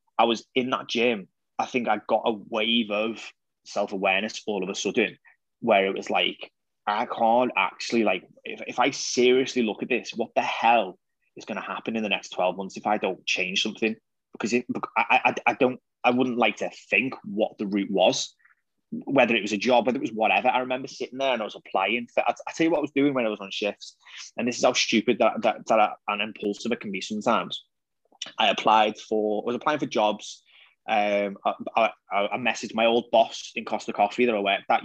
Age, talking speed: 20-39, 230 wpm